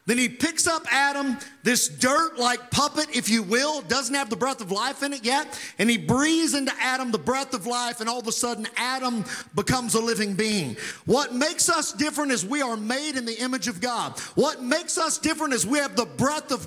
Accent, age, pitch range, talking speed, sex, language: American, 50-69, 235-300 Hz, 225 wpm, male, English